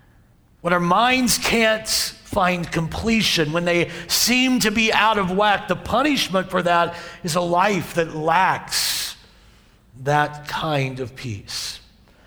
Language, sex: English, male